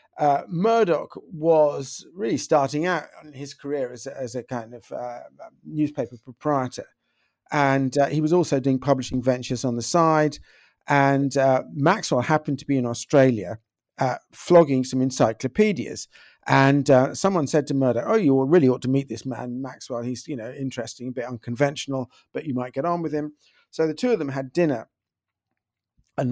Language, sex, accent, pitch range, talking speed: English, male, British, 125-155 Hz, 175 wpm